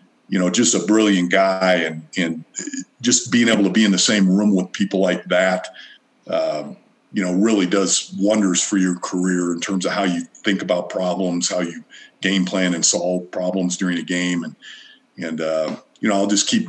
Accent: American